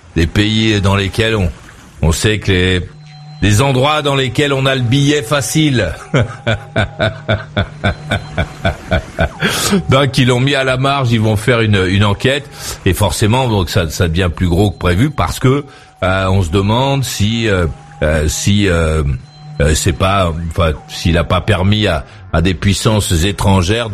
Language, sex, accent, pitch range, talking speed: French, male, French, 100-140 Hz, 160 wpm